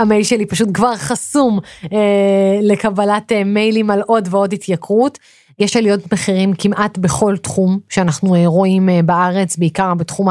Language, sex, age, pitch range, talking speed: Hebrew, female, 30-49, 185-225 Hz, 135 wpm